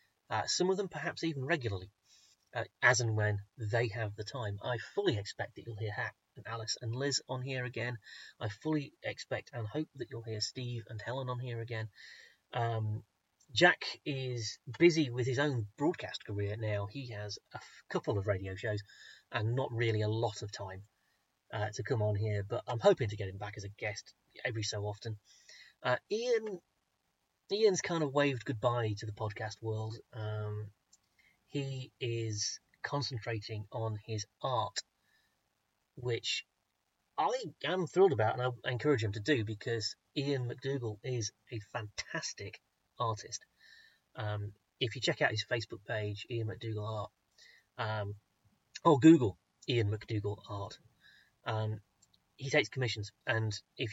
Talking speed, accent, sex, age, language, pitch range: 160 wpm, British, male, 30-49, English, 105-135 Hz